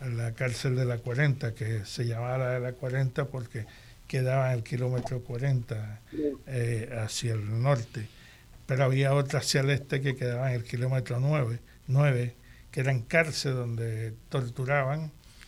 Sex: male